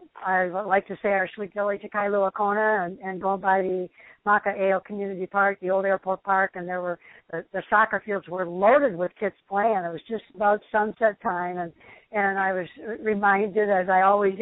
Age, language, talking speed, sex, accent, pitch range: 60-79, English, 205 wpm, female, American, 185-205 Hz